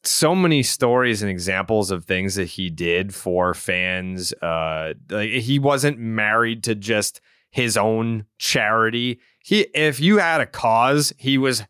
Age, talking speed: 30-49, 150 wpm